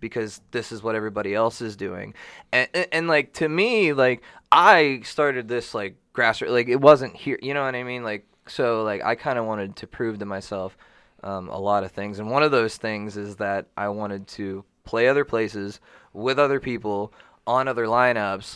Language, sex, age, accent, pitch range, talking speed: English, male, 20-39, American, 100-120 Hz, 205 wpm